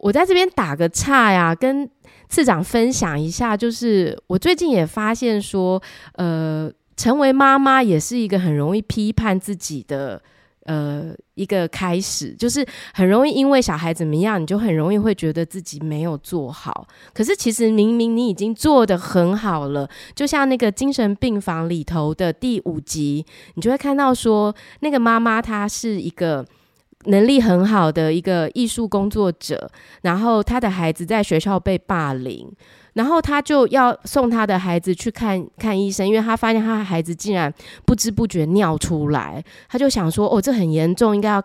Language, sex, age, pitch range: Chinese, female, 20-39, 170-245 Hz